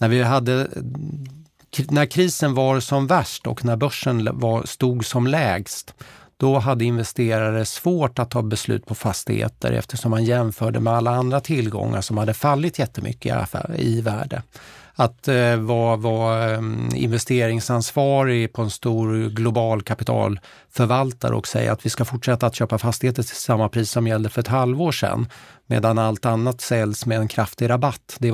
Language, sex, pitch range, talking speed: Swedish, male, 110-130 Hz, 150 wpm